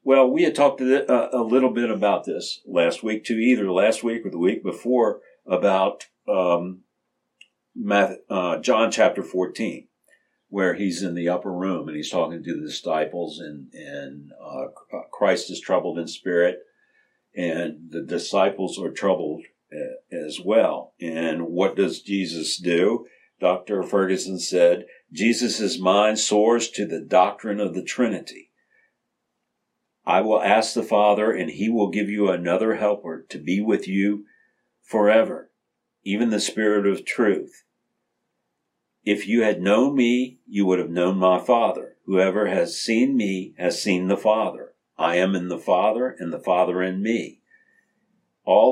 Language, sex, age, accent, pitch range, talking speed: English, male, 60-79, American, 95-120 Hz, 150 wpm